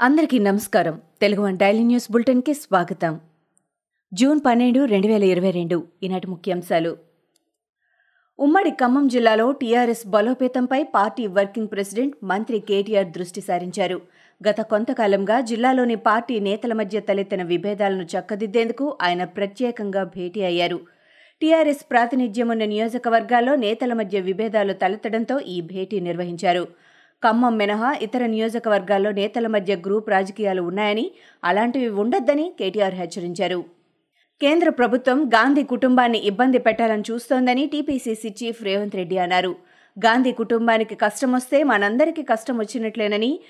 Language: Telugu